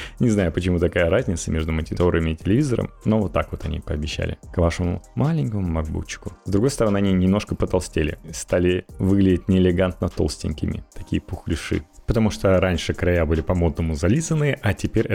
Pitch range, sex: 90-120 Hz, male